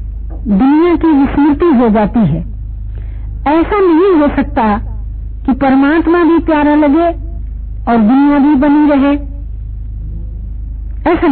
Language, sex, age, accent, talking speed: Hindi, female, 50-69, native, 110 wpm